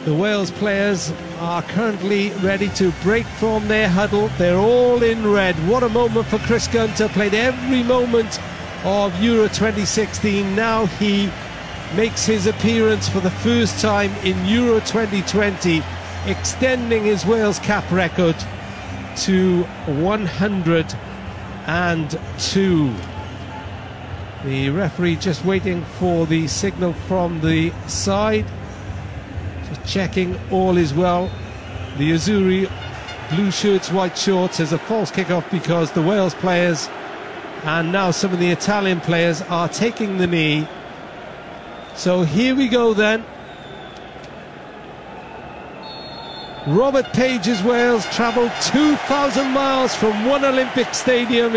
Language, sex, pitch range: English, male, 165-220 Hz